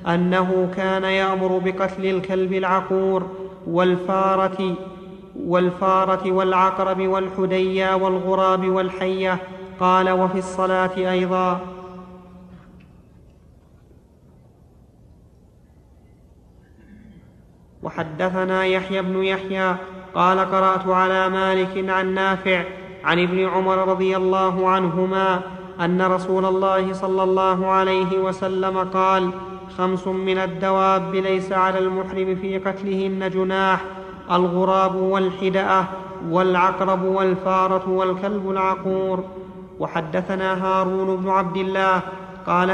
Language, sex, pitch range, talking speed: Arabic, male, 185-190 Hz, 85 wpm